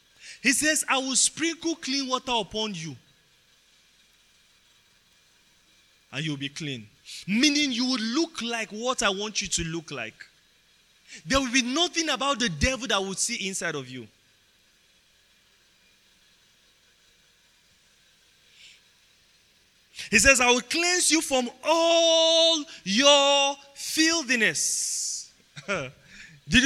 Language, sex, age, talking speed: English, male, 20-39, 110 wpm